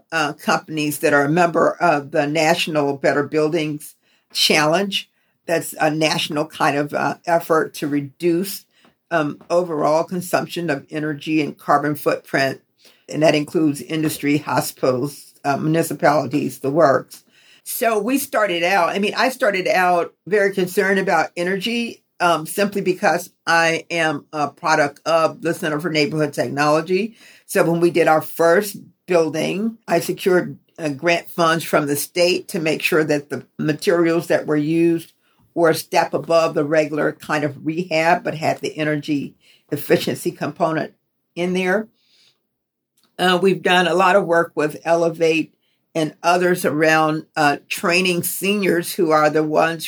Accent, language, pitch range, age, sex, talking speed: American, English, 155-180 Hz, 50-69, female, 150 wpm